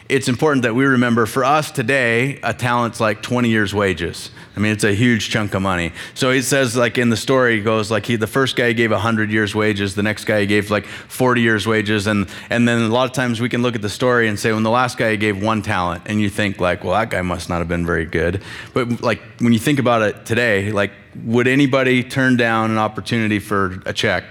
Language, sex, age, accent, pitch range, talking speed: English, male, 30-49, American, 105-120 Hz, 250 wpm